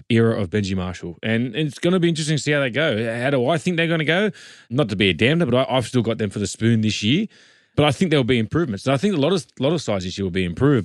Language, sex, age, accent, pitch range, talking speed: English, male, 20-39, Australian, 105-135 Hz, 335 wpm